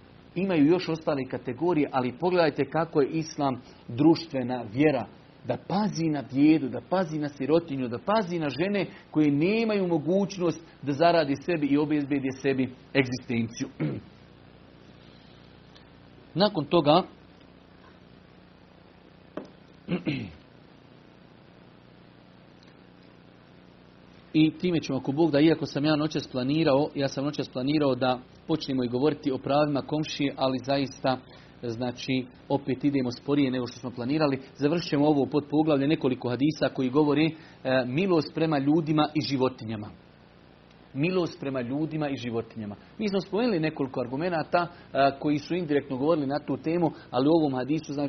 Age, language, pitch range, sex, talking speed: 40-59, Croatian, 130-155 Hz, male, 125 wpm